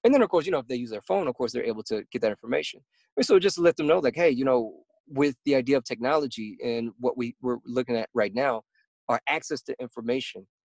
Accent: American